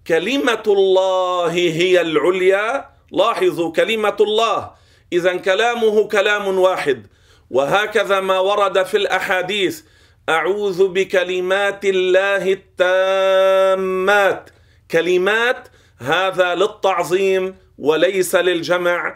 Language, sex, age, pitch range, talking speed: Arabic, male, 40-59, 175-205 Hz, 80 wpm